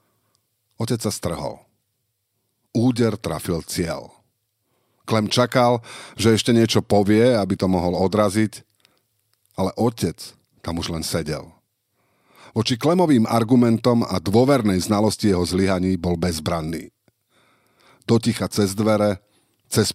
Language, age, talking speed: Slovak, 50-69, 110 wpm